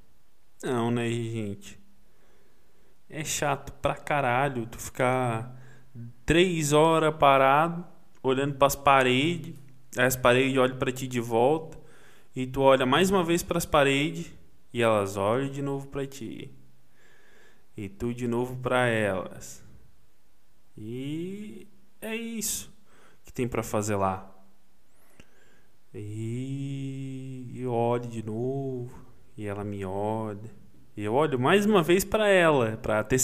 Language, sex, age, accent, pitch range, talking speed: Portuguese, male, 20-39, Brazilian, 115-150 Hz, 125 wpm